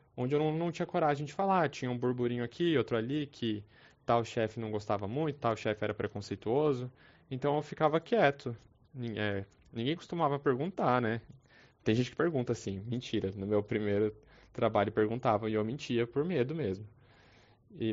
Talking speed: 165 wpm